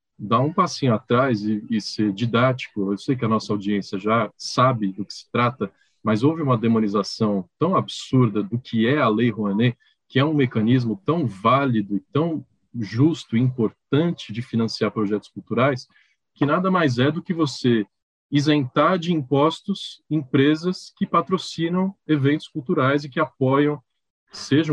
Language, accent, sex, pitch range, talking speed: Portuguese, Brazilian, male, 110-150 Hz, 160 wpm